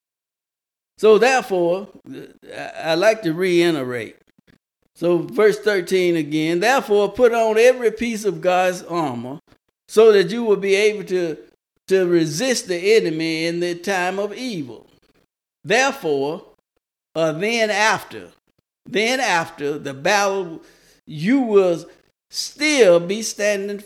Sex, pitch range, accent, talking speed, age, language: male, 170-215 Hz, American, 120 wpm, 60-79, English